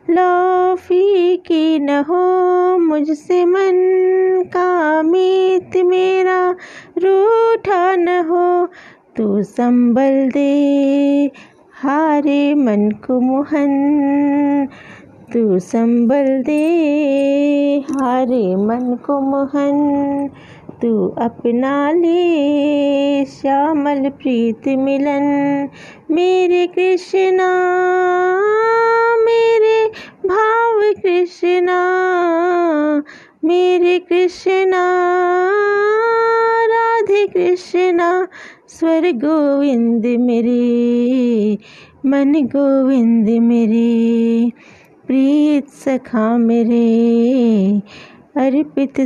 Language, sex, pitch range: Hindi, female, 245-360 Hz